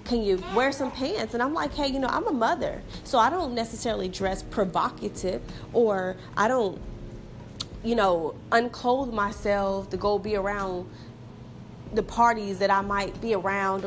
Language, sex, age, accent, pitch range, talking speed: English, female, 30-49, American, 205-270 Hz, 165 wpm